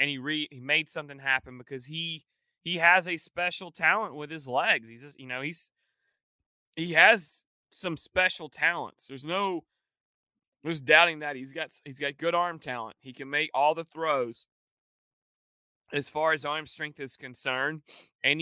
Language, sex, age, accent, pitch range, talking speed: English, male, 30-49, American, 140-180 Hz, 170 wpm